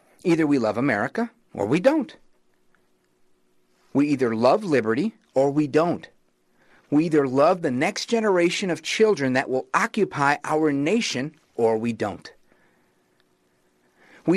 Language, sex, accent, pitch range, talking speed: English, male, American, 115-170 Hz, 130 wpm